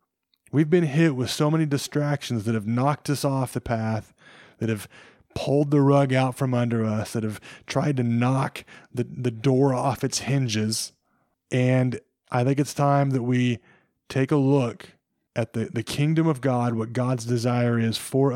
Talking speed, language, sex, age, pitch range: 180 wpm, English, male, 20-39, 120-140 Hz